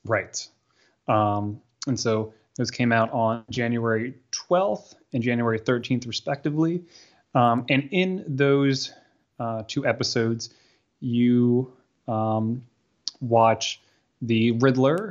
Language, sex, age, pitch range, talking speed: English, male, 20-39, 110-125 Hz, 105 wpm